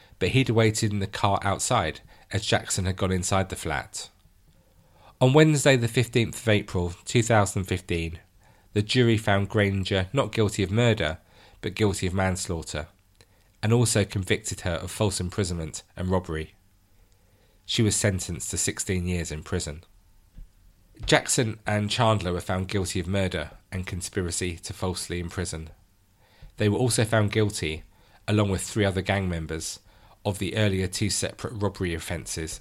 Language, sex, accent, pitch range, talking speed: English, male, British, 90-105 Hz, 150 wpm